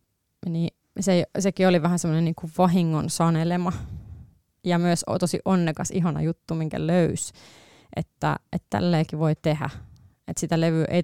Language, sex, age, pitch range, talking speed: Finnish, female, 20-39, 155-175 Hz, 140 wpm